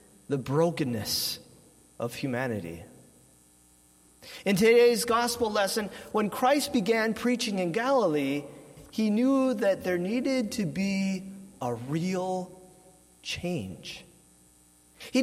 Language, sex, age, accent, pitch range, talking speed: English, male, 40-59, American, 140-220 Hz, 100 wpm